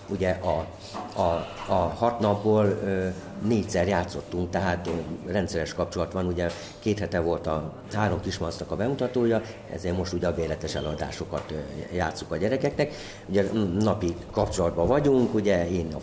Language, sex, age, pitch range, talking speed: Hungarian, male, 50-69, 95-130 Hz, 140 wpm